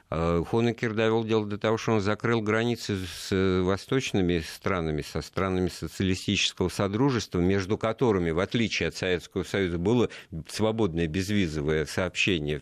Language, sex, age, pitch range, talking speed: Russian, male, 50-69, 80-100 Hz, 130 wpm